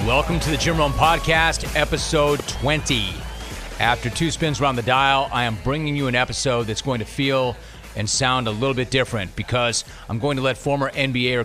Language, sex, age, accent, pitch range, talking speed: English, male, 40-59, American, 115-140 Hz, 195 wpm